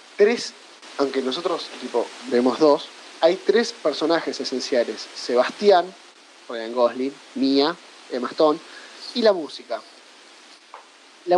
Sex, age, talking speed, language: male, 20-39, 105 wpm, Spanish